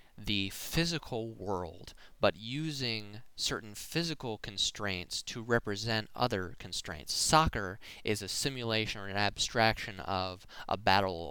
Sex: male